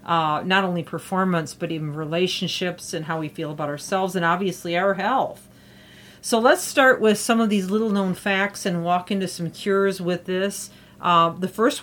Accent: American